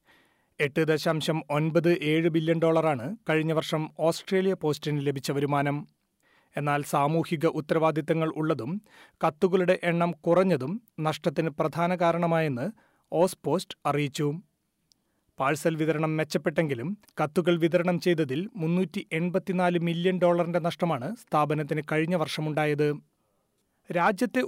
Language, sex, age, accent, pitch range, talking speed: Malayalam, male, 30-49, native, 160-185 Hz, 95 wpm